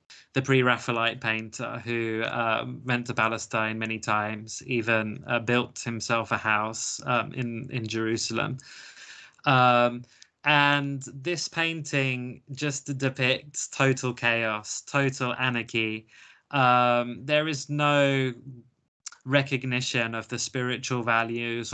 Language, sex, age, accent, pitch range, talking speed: English, male, 20-39, British, 115-130 Hz, 110 wpm